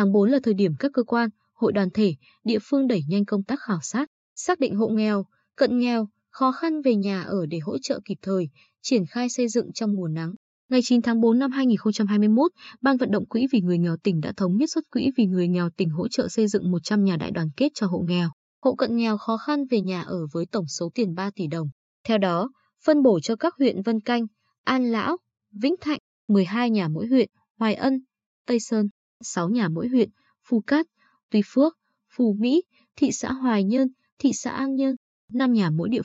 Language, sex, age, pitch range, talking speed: Vietnamese, female, 20-39, 195-255 Hz, 225 wpm